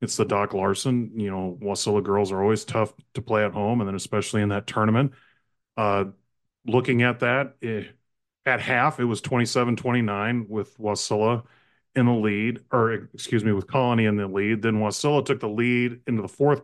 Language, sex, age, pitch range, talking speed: English, male, 30-49, 105-125 Hz, 190 wpm